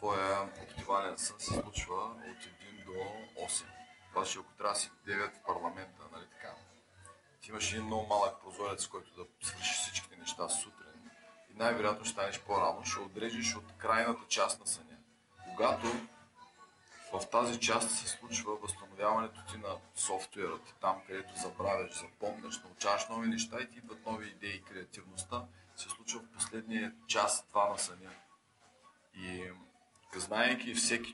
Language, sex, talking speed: Bulgarian, male, 145 wpm